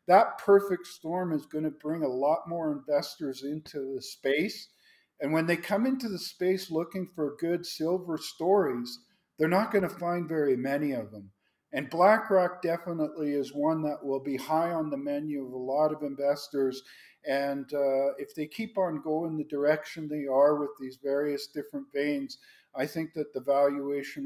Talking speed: 180 wpm